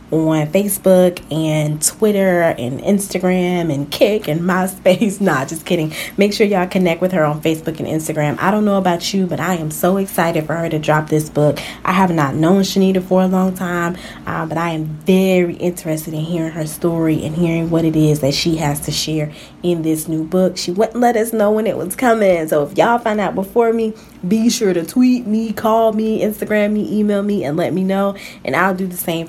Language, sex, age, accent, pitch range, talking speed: English, female, 20-39, American, 155-195 Hz, 220 wpm